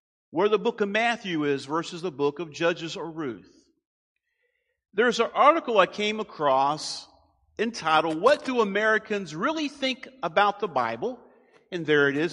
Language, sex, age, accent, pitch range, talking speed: English, male, 50-69, American, 160-235 Hz, 155 wpm